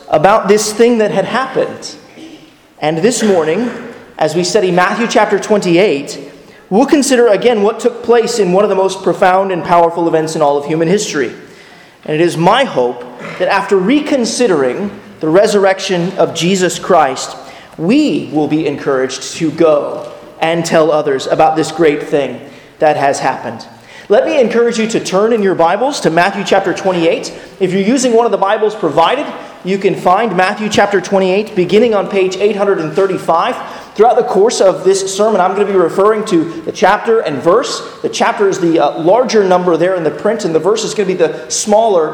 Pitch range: 165-215 Hz